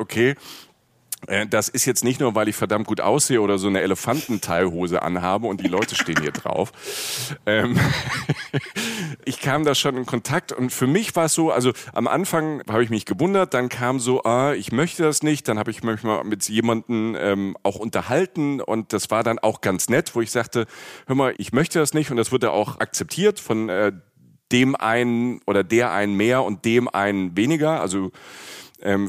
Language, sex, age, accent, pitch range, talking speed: German, male, 40-59, German, 105-135 Hz, 190 wpm